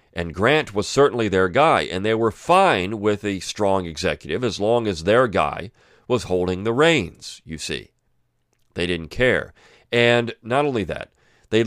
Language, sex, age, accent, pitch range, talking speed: English, male, 40-59, American, 95-135 Hz, 170 wpm